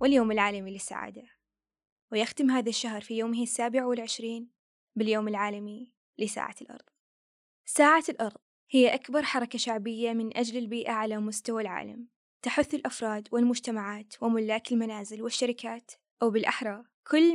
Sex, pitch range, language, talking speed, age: female, 220-245 Hz, Arabic, 120 wpm, 20-39